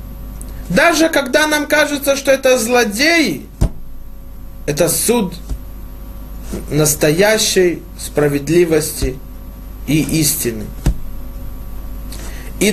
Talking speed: 65 wpm